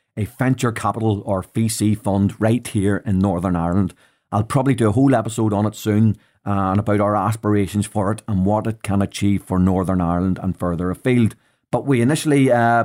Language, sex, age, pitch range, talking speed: English, male, 30-49, 95-120 Hz, 190 wpm